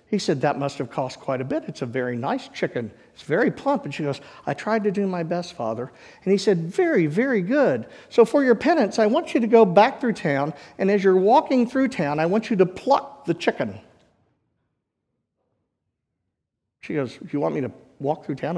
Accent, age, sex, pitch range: American, 50-69, male, 130-205 Hz